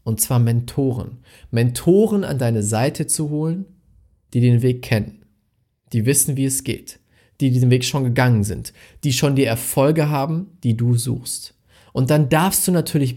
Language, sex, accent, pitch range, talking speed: German, male, German, 110-150 Hz, 170 wpm